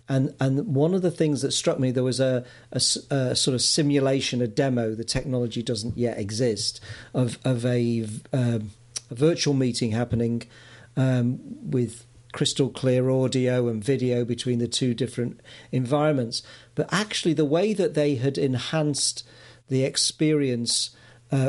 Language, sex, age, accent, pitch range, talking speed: English, male, 40-59, British, 125-150 Hz, 155 wpm